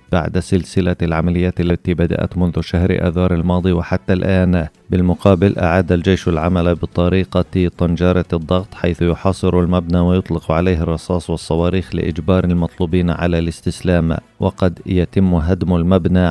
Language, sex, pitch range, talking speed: Arabic, male, 85-95 Hz, 120 wpm